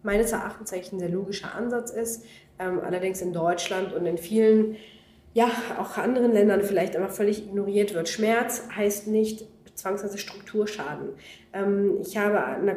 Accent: German